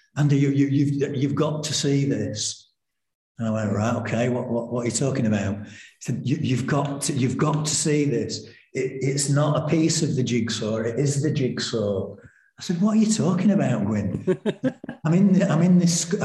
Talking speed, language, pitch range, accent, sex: 215 wpm, English, 105-155 Hz, British, male